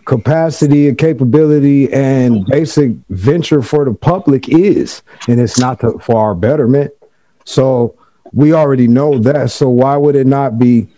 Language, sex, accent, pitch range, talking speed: English, male, American, 130-150 Hz, 150 wpm